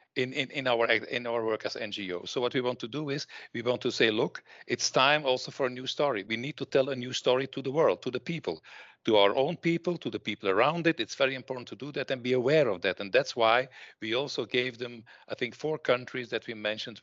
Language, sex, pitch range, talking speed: English, male, 110-135 Hz, 265 wpm